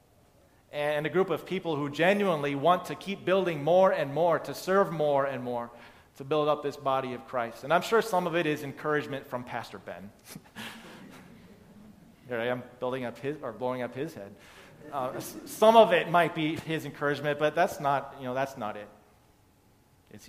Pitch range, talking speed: 130-160 Hz, 190 wpm